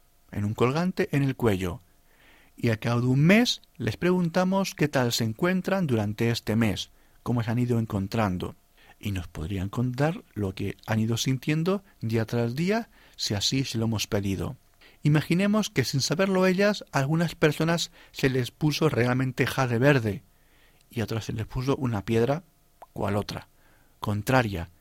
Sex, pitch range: male, 110-150 Hz